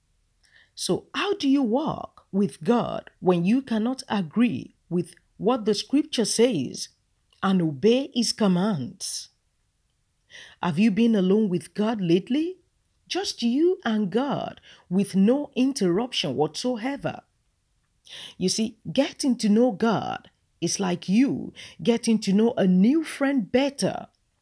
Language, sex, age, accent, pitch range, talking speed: English, female, 40-59, Nigerian, 195-270 Hz, 125 wpm